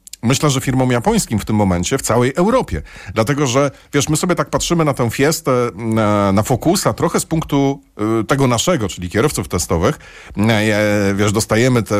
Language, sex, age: Polish, male, 40-59